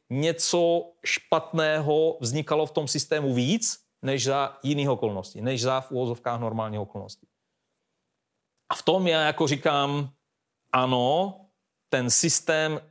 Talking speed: 120 wpm